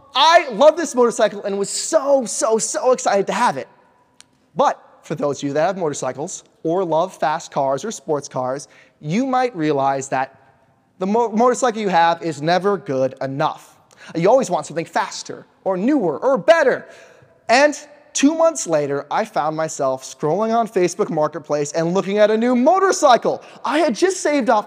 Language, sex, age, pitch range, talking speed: English, male, 20-39, 165-255 Hz, 175 wpm